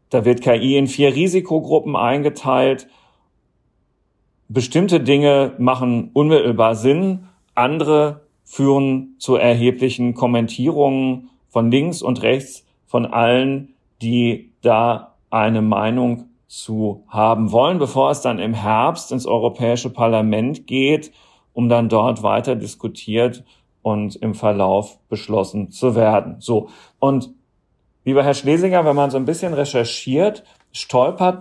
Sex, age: male, 40-59